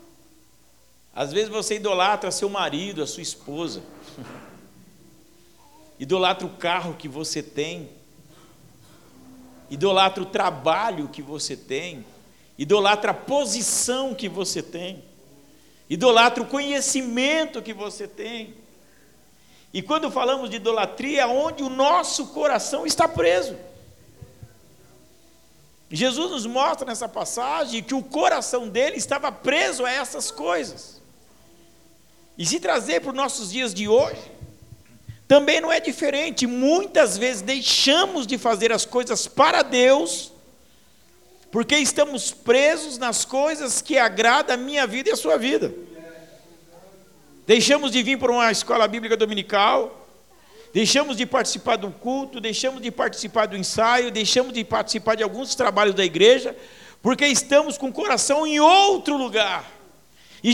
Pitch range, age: 190-275 Hz, 50-69